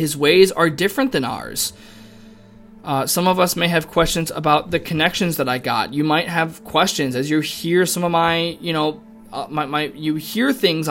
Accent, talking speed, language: American, 205 wpm, English